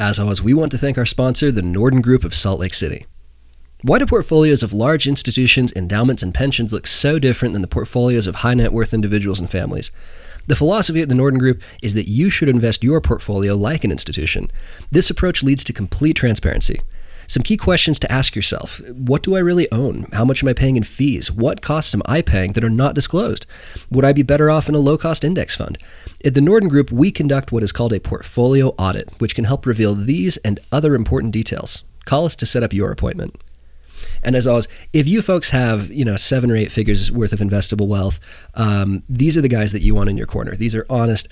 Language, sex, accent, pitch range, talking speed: English, male, American, 100-130 Hz, 225 wpm